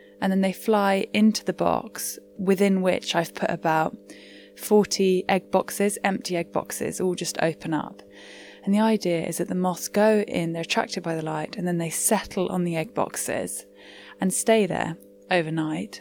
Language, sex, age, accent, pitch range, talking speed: English, female, 10-29, British, 155-195 Hz, 180 wpm